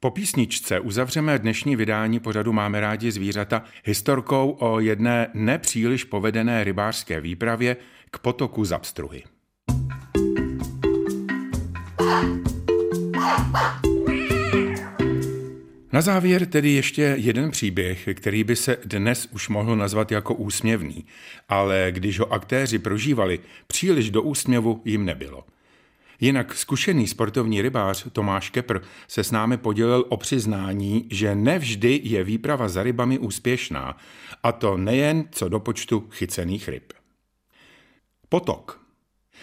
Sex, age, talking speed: male, 50-69, 110 wpm